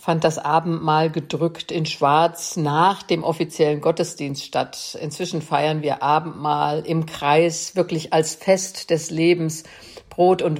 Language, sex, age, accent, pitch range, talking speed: German, female, 50-69, German, 150-170 Hz, 135 wpm